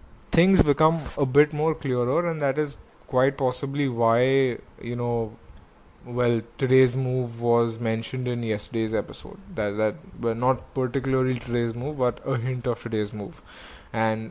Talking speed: 155 wpm